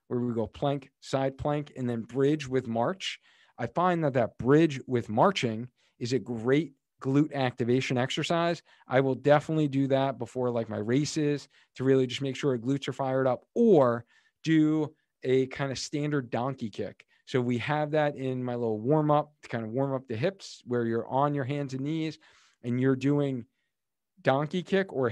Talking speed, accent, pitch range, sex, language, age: 190 wpm, American, 125-160 Hz, male, English, 40-59